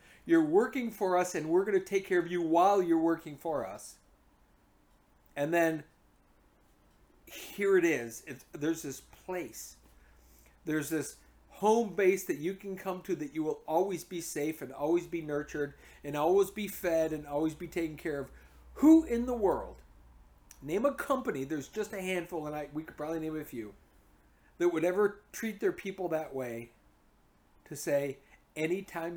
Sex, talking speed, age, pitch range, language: male, 170 wpm, 40-59, 115-175 Hz, English